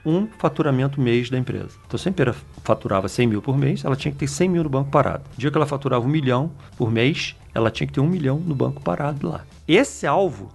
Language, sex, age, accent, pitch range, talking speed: Portuguese, male, 40-59, Brazilian, 120-155 Hz, 250 wpm